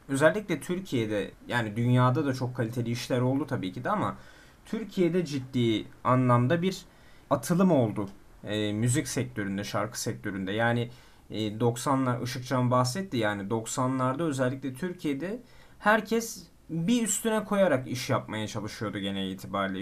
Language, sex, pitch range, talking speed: Turkish, male, 110-135 Hz, 125 wpm